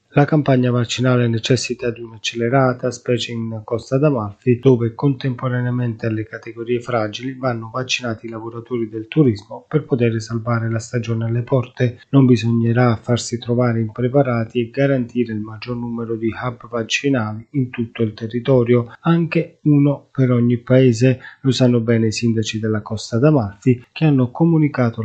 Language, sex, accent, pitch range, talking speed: Italian, male, native, 115-130 Hz, 145 wpm